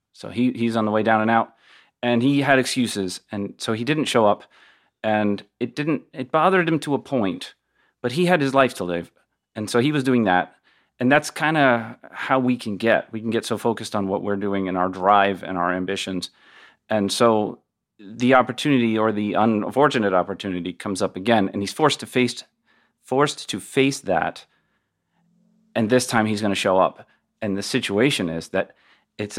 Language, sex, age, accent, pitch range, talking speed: English, male, 30-49, American, 95-120 Hz, 200 wpm